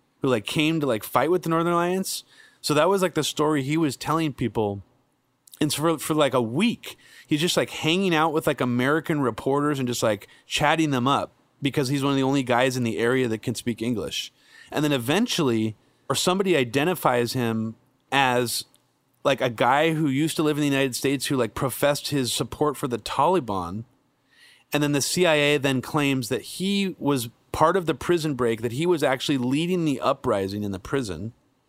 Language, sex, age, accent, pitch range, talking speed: English, male, 30-49, American, 120-150 Hz, 200 wpm